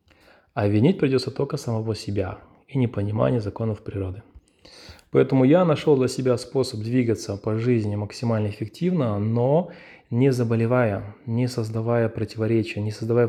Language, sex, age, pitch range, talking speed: Russian, male, 20-39, 105-125 Hz, 130 wpm